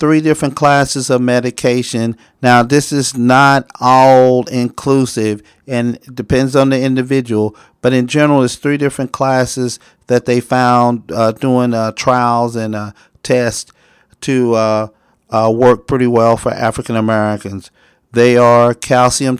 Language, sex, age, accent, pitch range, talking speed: English, male, 40-59, American, 115-125 Hz, 140 wpm